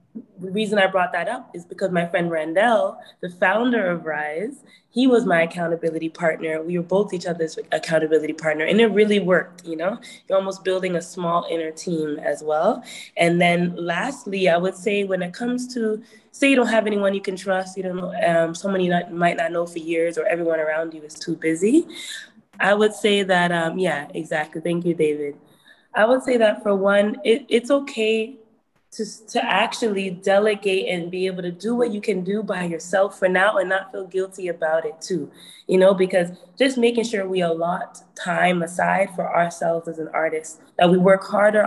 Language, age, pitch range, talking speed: English, 20-39, 170-210 Hz, 200 wpm